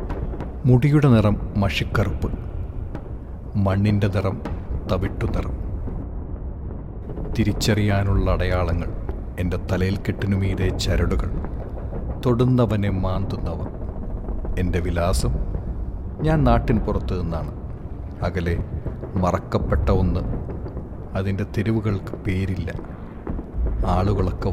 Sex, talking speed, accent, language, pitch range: male, 70 wpm, native, Malayalam, 90-105 Hz